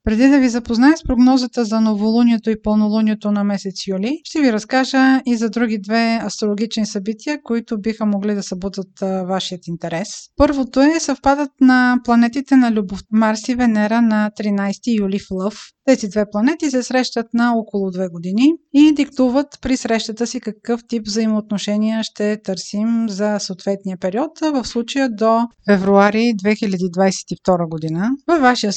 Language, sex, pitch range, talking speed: Bulgarian, female, 205-250 Hz, 155 wpm